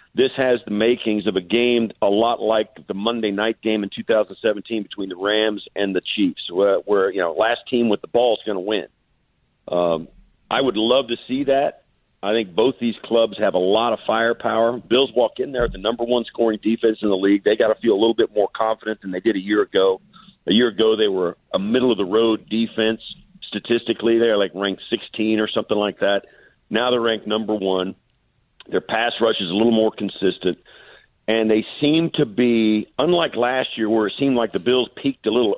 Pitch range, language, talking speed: 105-125 Hz, English, 220 wpm